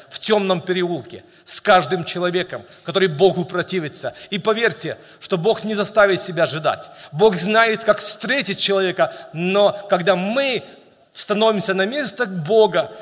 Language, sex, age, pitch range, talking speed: Russian, male, 50-69, 175-220 Hz, 135 wpm